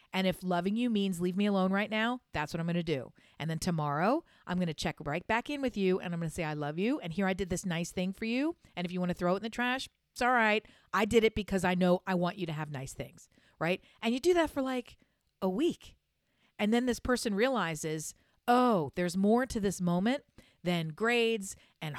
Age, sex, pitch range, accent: 40-59, female, 170-220 Hz, American